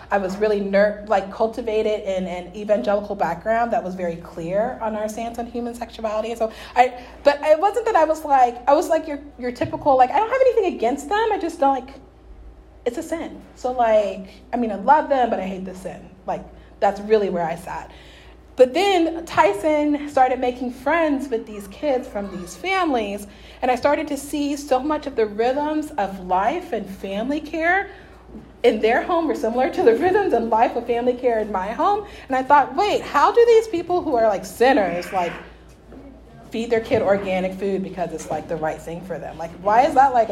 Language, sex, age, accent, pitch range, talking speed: English, female, 30-49, American, 210-305 Hz, 210 wpm